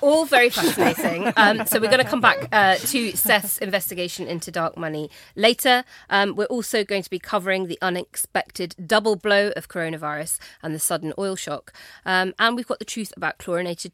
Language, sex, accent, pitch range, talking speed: English, female, British, 170-215 Hz, 190 wpm